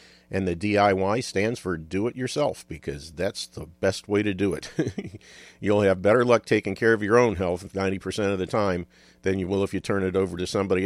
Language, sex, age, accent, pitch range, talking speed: English, male, 50-69, American, 90-105 Hz, 210 wpm